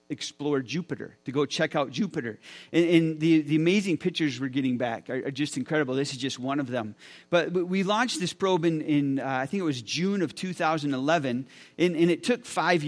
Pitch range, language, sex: 145-180 Hz, English, male